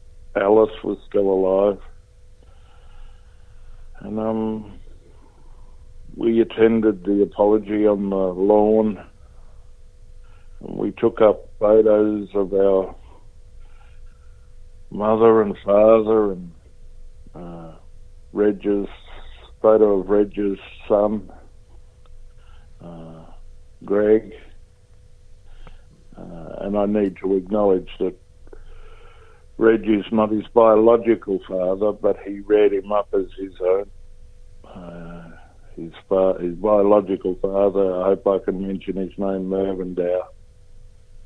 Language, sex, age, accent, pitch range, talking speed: English, male, 60-79, American, 95-105 Hz, 95 wpm